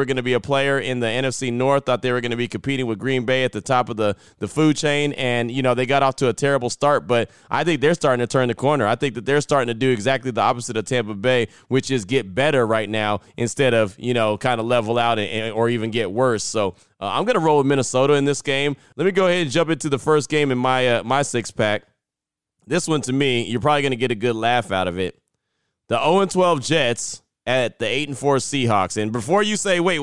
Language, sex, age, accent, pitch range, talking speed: English, male, 20-39, American, 115-145 Hz, 270 wpm